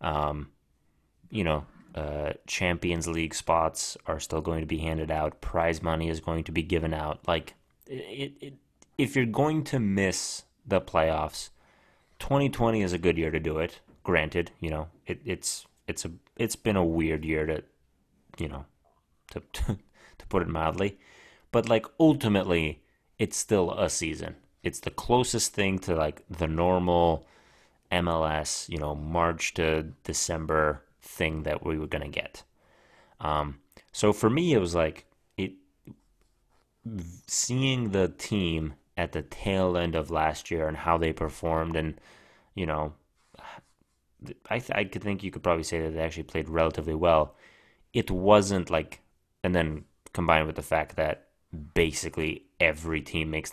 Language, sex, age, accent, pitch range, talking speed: English, male, 30-49, American, 80-95 Hz, 160 wpm